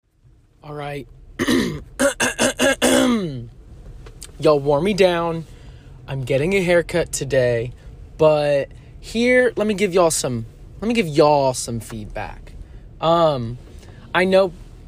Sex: male